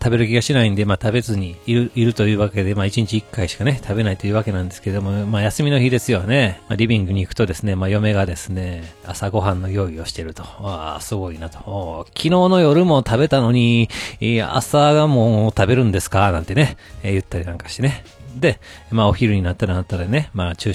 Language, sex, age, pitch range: Japanese, male, 40-59, 100-125 Hz